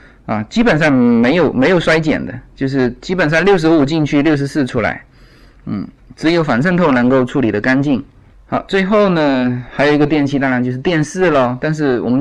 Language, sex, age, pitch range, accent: Chinese, male, 20-39, 125-160 Hz, native